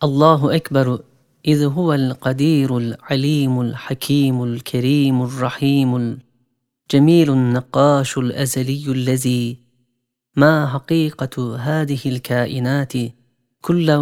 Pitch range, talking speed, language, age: 130-150 Hz, 75 wpm, Turkish, 30-49